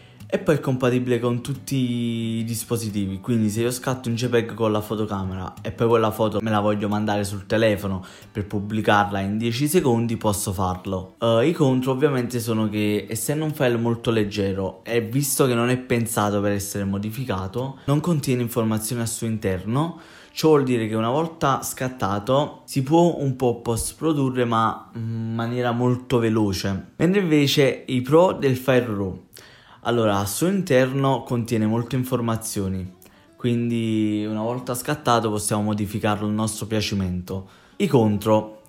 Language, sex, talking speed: Italian, male, 160 wpm